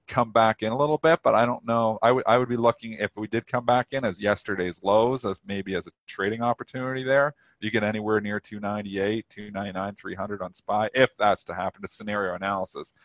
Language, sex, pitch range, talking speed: English, male, 95-120 Hz, 220 wpm